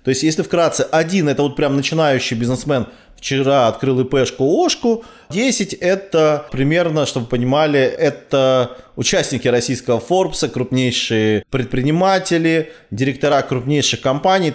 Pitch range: 120-155 Hz